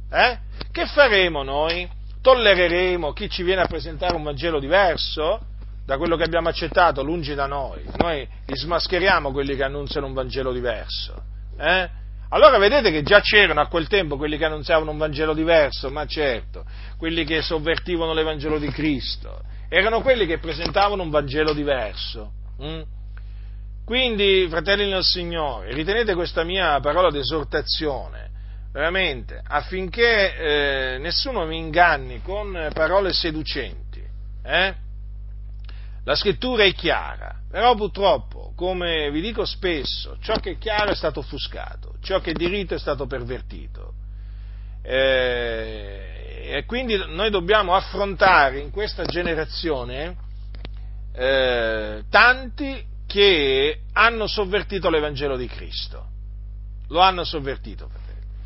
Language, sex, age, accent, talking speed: Italian, male, 40-59, native, 125 wpm